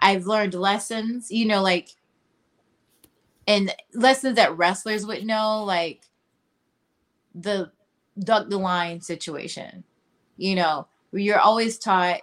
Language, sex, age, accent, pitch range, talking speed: English, female, 20-39, American, 185-220 Hz, 115 wpm